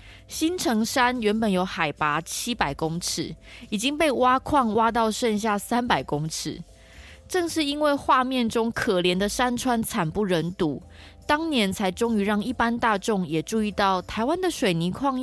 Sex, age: female, 20-39